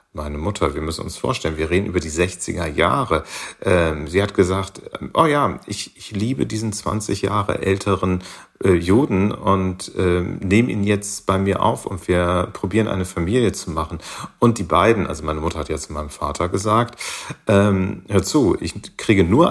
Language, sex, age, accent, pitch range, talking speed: German, male, 40-59, German, 85-110 Hz, 170 wpm